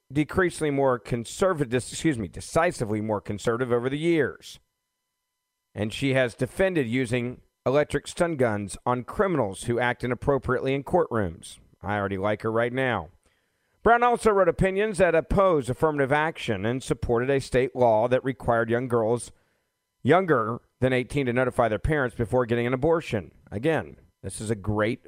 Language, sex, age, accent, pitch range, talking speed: English, male, 40-59, American, 115-160 Hz, 155 wpm